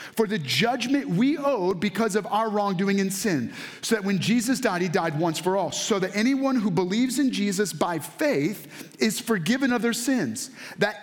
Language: English